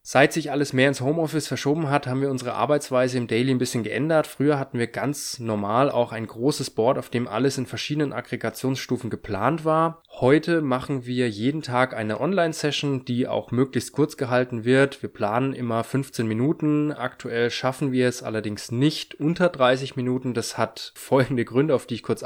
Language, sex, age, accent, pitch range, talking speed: German, male, 20-39, German, 120-145 Hz, 185 wpm